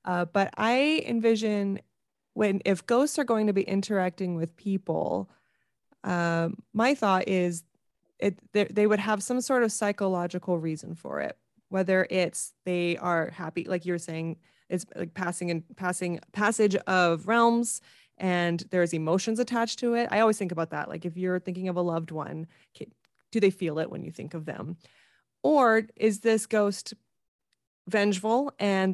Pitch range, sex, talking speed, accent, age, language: 175-215 Hz, female, 165 wpm, American, 20-39, English